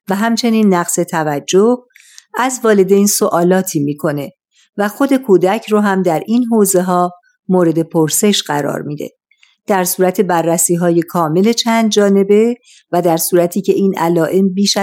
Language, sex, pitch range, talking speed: Persian, female, 175-220 Hz, 145 wpm